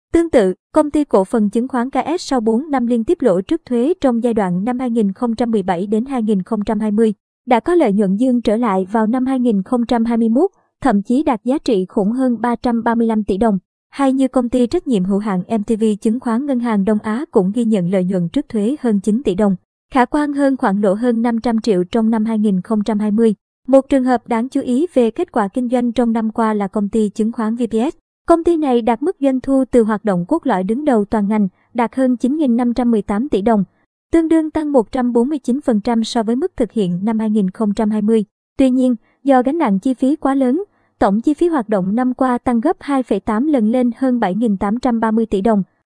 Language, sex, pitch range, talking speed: Vietnamese, male, 215-260 Hz, 205 wpm